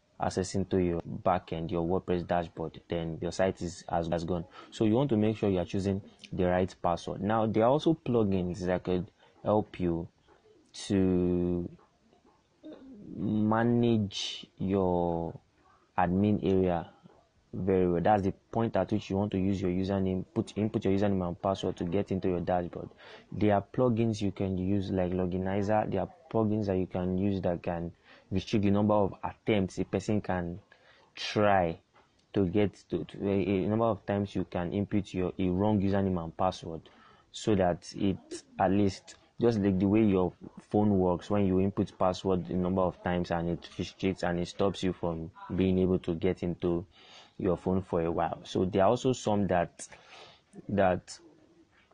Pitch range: 90-105 Hz